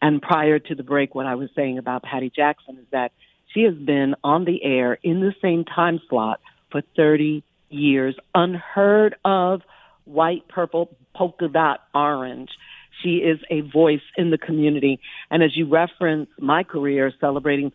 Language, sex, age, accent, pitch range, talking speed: English, female, 50-69, American, 140-160 Hz, 165 wpm